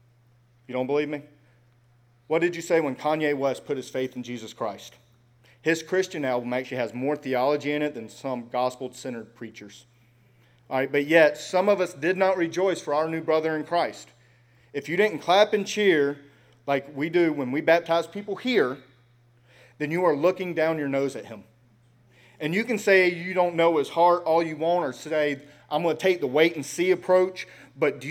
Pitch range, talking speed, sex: 120-165 Hz, 200 wpm, male